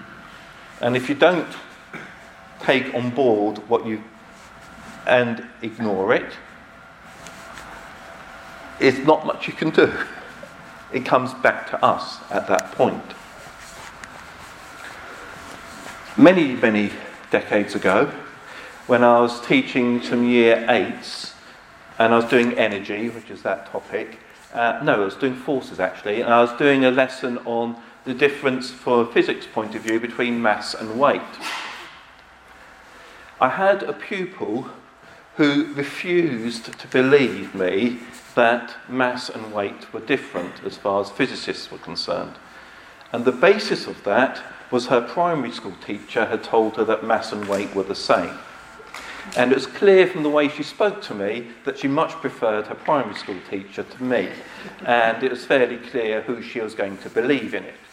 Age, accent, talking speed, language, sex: 50-69, British, 150 wpm, English, male